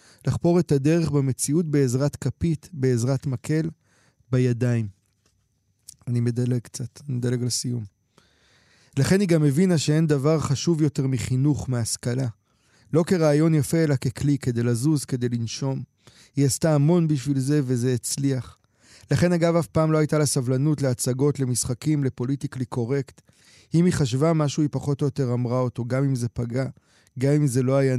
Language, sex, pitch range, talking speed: Hebrew, male, 125-150 Hz, 155 wpm